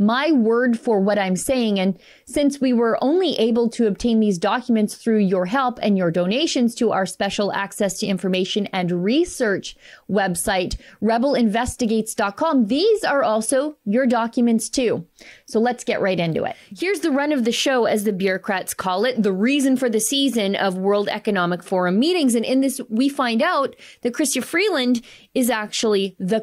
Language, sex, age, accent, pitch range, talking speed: English, female, 30-49, American, 200-255 Hz, 175 wpm